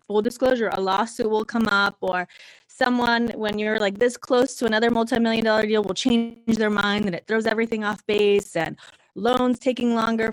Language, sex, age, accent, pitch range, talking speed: English, female, 20-39, American, 185-230 Hz, 190 wpm